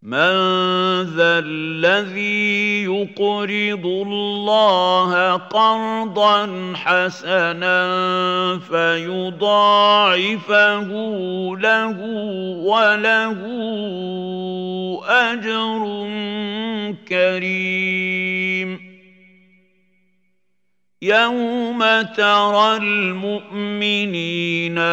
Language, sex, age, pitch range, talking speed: Arabic, male, 50-69, 185-215 Hz, 35 wpm